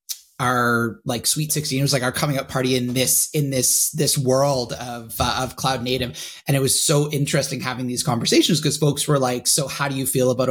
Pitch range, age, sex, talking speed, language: 125-155 Hz, 30-49, male, 230 wpm, English